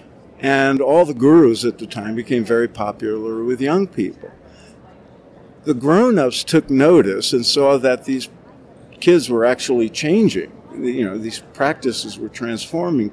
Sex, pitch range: male, 110-135 Hz